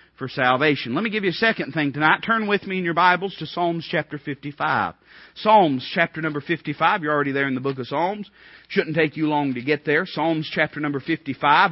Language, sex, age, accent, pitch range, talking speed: English, male, 40-59, American, 130-185 Hz, 220 wpm